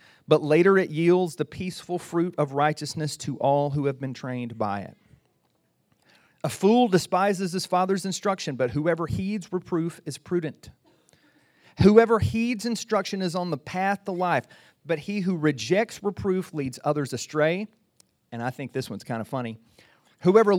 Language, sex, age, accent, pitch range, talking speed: English, male, 40-59, American, 145-200 Hz, 160 wpm